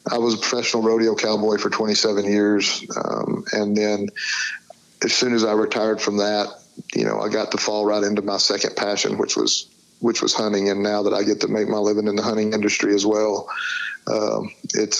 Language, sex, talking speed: English, male, 210 wpm